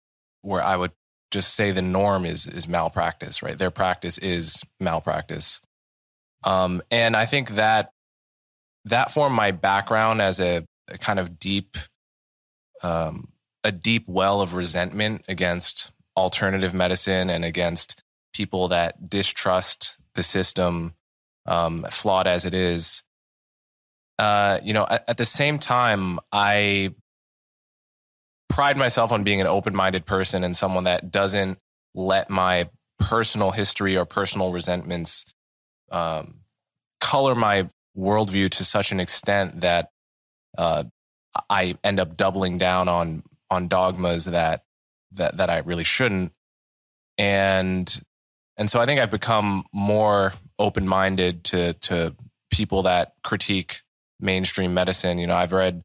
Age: 20-39